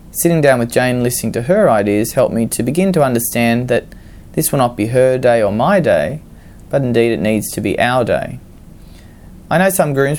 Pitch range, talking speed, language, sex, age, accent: 105-125 Hz, 210 wpm, English, male, 20-39, Australian